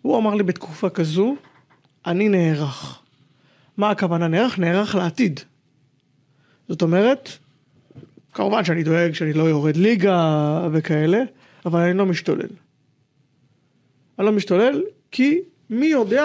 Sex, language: male, Hebrew